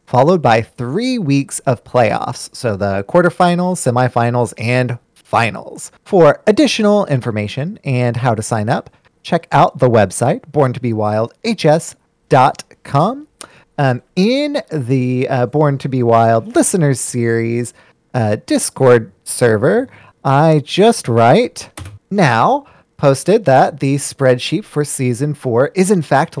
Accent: American